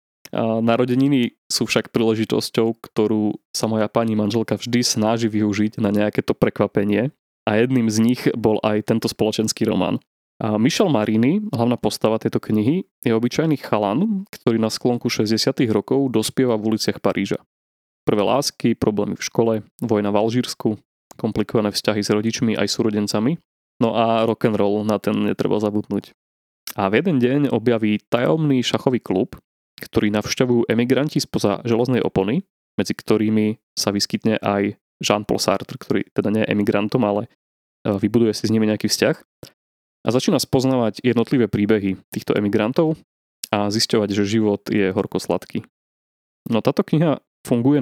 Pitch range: 105-120 Hz